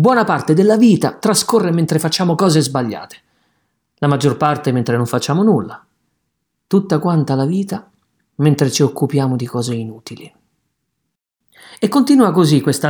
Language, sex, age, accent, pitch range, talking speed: Italian, male, 40-59, native, 135-200 Hz, 140 wpm